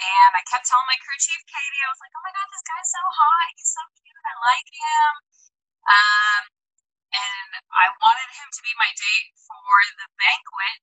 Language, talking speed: English, 200 wpm